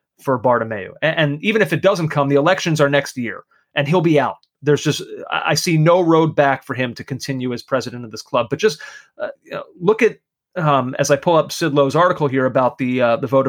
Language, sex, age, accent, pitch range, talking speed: English, male, 30-49, American, 130-155 Hz, 240 wpm